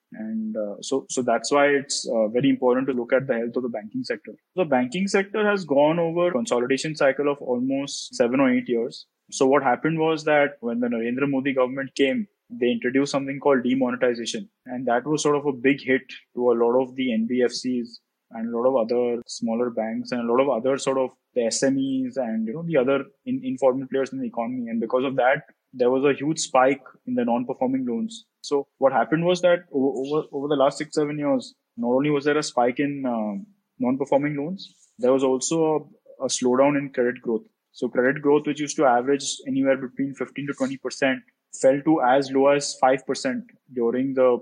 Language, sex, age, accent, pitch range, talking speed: English, male, 20-39, Indian, 125-155 Hz, 205 wpm